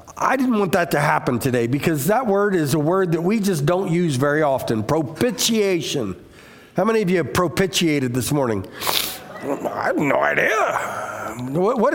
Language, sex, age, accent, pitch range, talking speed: English, male, 50-69, American, 165-230 Hz, 170 wpm